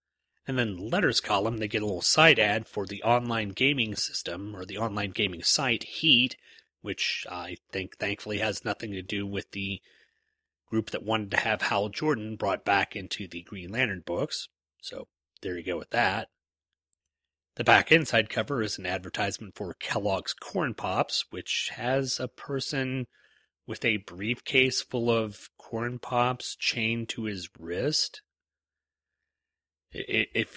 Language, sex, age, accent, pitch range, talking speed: English, male, 30-49, American, 90-115 Hz, 155 wpm